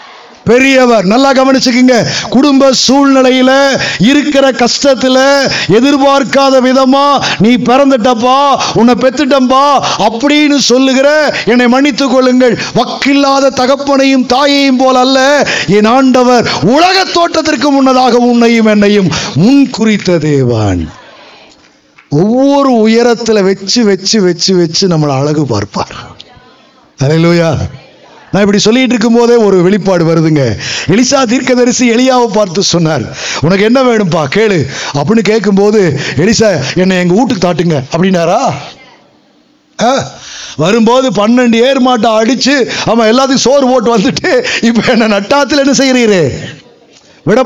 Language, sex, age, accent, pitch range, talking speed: Tamil, male, 50-69, native, 200-270 Hz, 65 wpm